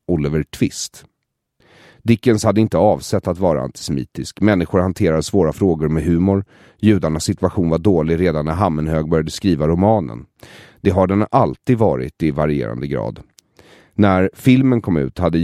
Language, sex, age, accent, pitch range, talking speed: English, male, 30-49, Swedish, 75-100 Hz, 150 wpm